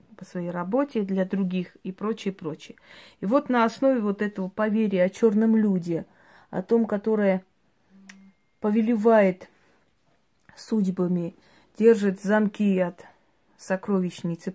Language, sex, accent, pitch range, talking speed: Russian, female, native, 180-220 Hz, 110 wpm